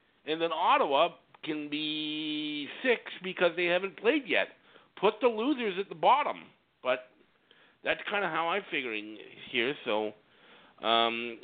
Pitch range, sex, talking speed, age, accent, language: 130-195 Hz, male, 140 wpm, 50-69, American, English